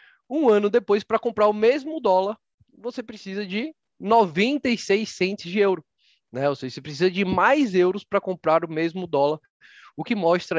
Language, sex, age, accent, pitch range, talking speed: Portuguese, male, 20-39, Brazilian, 150-215 Hz, 175 wpm